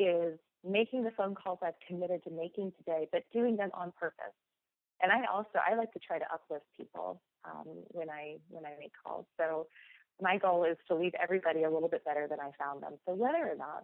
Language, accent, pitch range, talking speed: English, American, 160-195 Hz, 220 wpm